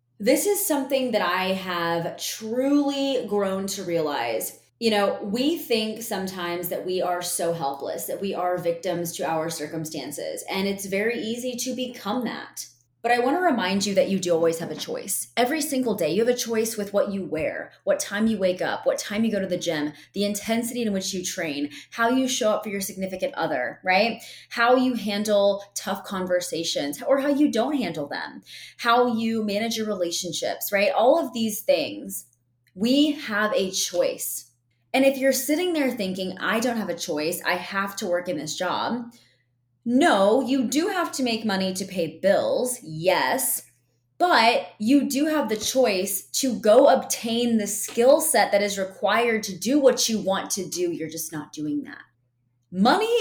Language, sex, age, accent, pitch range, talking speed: English, female, 20-39, American, 175-255 Hz, 190 wpm